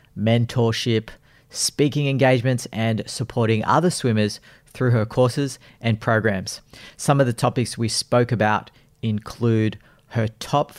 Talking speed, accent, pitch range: 120 wpm, Australian, 115-140 Hz